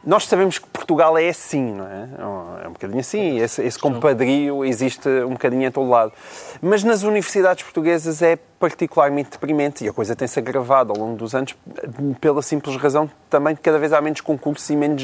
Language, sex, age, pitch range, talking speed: Portuguese, male, 20-39, 120-155 Hz, 190 wpm